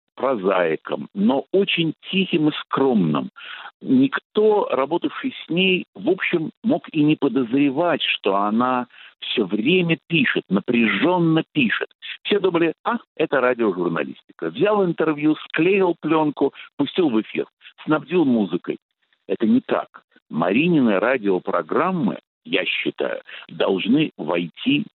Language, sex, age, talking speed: Russian, male, 60-79, 110 wpm